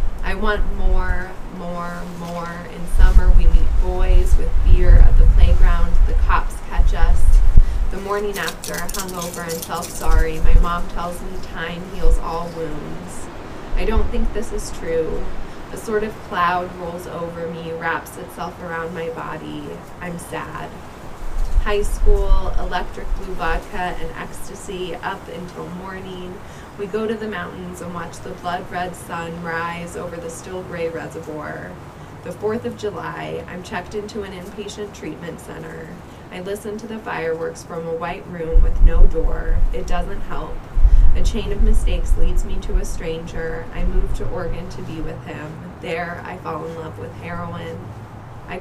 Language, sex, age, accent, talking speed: English, female, 20-39, American, 165 wpm